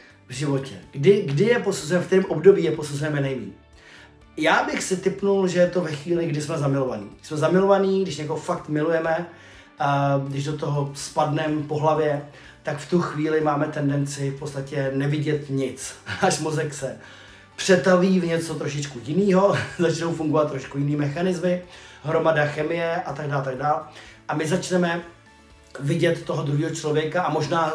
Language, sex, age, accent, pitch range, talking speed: Czech, male, 30-49, native, 140-170 Hz, 165 wpm